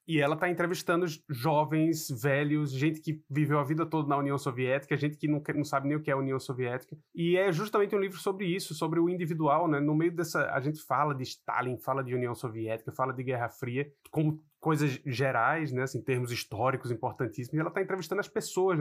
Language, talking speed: Portuguese, 220 wpm